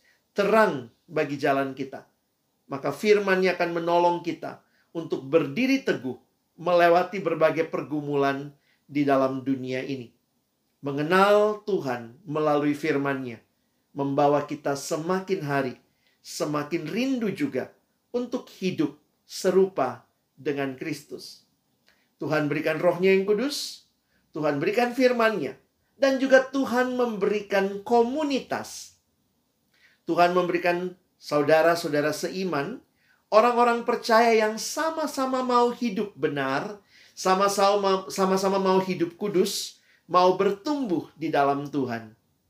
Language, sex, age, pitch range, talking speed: Indonesian, male, 40-59, 140-200 Hz, 95 wpm